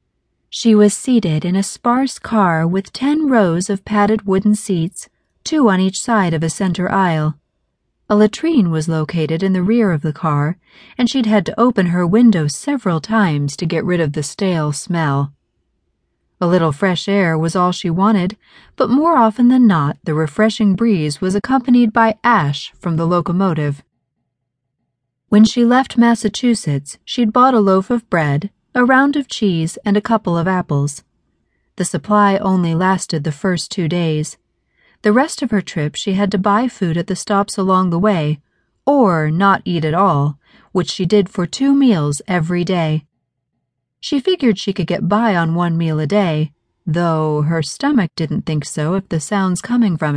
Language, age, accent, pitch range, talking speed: English, 40-59, American, 160-215 Hz, 180 wpm